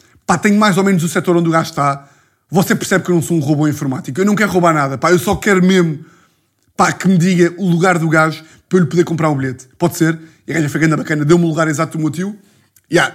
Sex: male